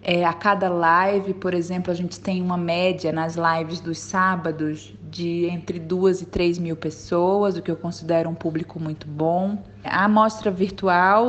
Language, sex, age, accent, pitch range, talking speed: Portuguese, female, 20-39, Brazilian, 170-205 Hz, 175 wpm